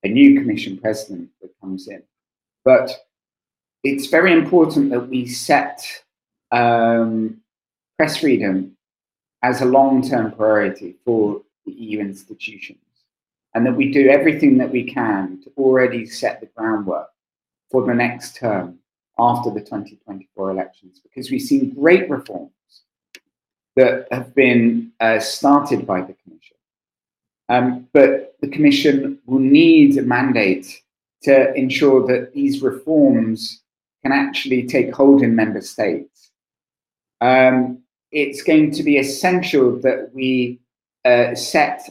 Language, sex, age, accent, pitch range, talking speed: English, male, 40-59, British, 115-145 Hz, 125 wpm